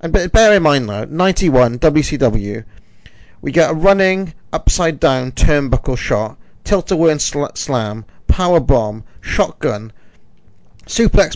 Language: English